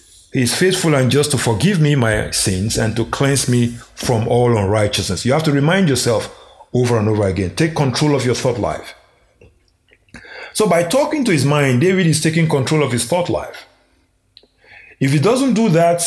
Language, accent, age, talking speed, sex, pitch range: English, Nigerian, 50-69, 185 wpm, male, 115-170 Hz